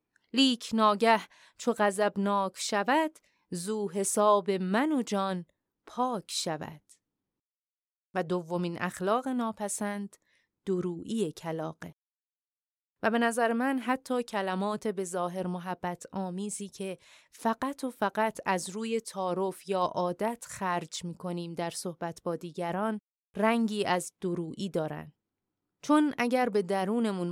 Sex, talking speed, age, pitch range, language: female, 110 wpm, 30-49, 175-225 Hz, Persian